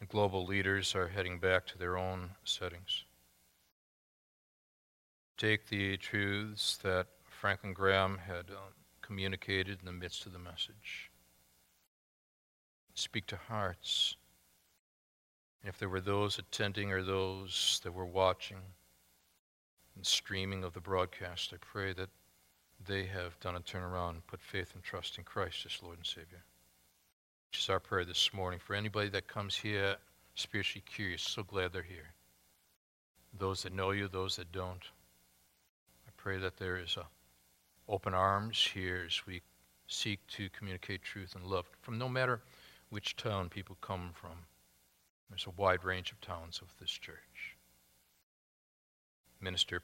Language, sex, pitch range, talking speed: English, male, 85-100 Hz, 145 wpm